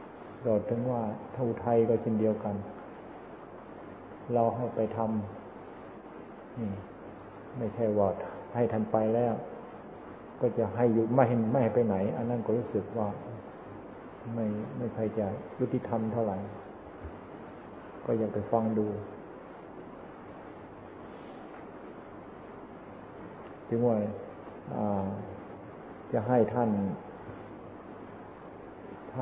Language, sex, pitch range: Thai, male, 105-120 Hz